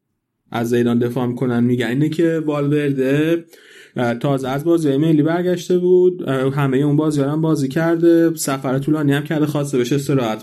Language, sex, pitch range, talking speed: Persian, male, 125-145 Hz, 150 wpm